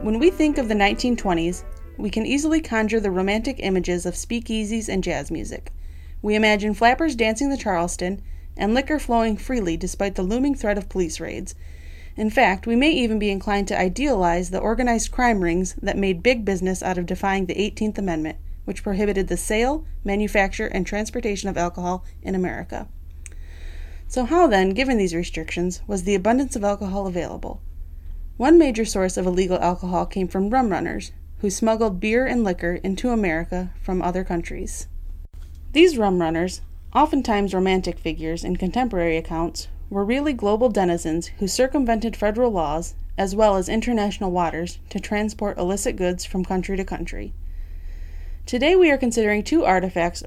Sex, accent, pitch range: female, American, 170-220 Hz